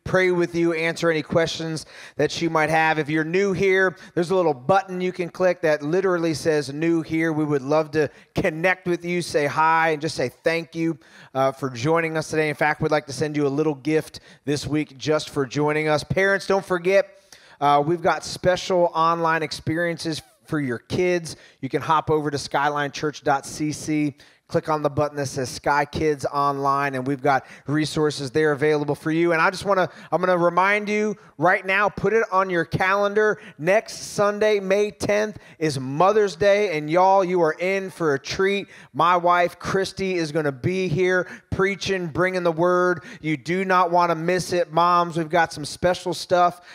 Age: 30-49